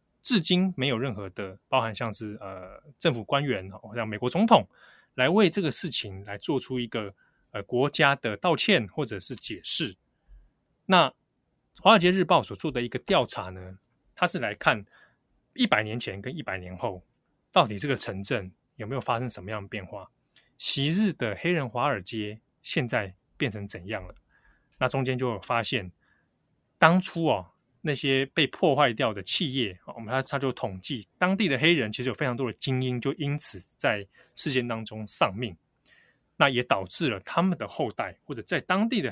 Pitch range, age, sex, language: 105-150 Hz, 20-39, male, Chinese